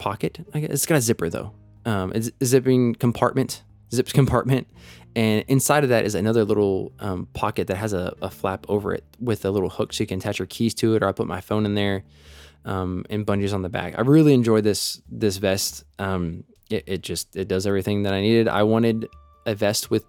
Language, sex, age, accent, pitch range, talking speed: English, male, 20-39, American, 95-115 Hz, 225 wpm